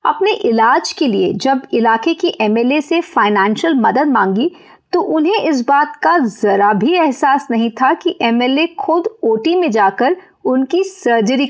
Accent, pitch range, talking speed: native, 225-345 Hz, 155 wpm